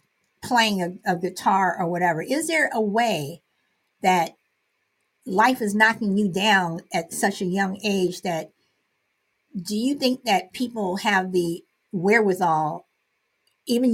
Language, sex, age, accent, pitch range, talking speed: English, female, 50-69, American, 180-225 Hz, 135 wpm